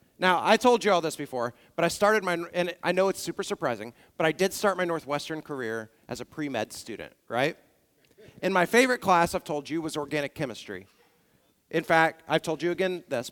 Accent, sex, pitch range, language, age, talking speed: American, male, 145-205 Hz, English, 40-59, 205 wpm